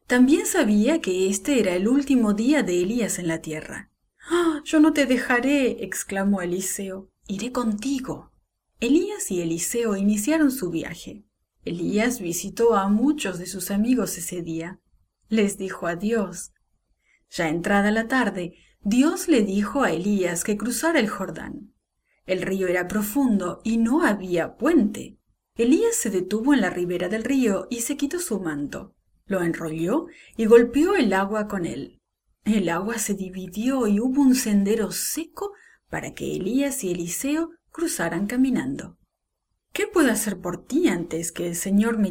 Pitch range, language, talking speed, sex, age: 185-265 Hz, English, 150 wpm, female, 30-49